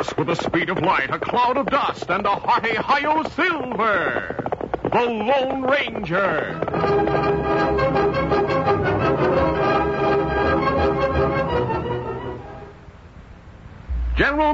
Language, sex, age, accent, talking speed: English, male, 60-79, American, 75 wpm